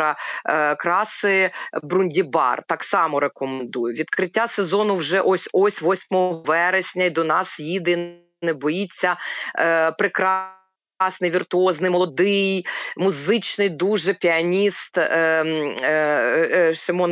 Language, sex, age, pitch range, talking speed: Ukrainian, female, 30-49, 160-185 Hz, 90 wpm